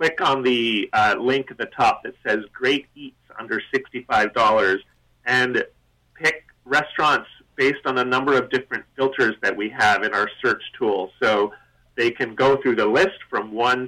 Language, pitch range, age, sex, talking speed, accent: English, 115-150 Hz, 40-59, male, 175 wpm, American